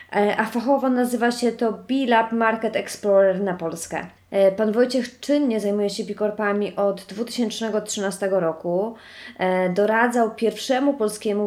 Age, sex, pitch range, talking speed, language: 20-39, female, 185-220 Hz, 115 wpm, Polish